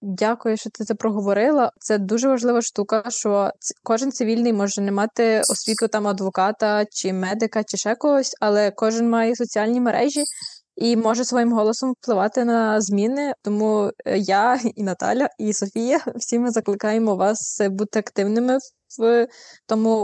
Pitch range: 195-230 Hz